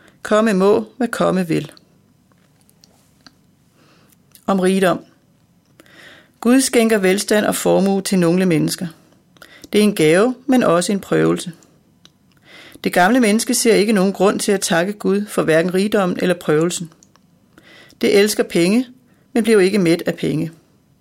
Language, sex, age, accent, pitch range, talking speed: Danish, female, 30-49, native, 175-220 Hz, 135 wpm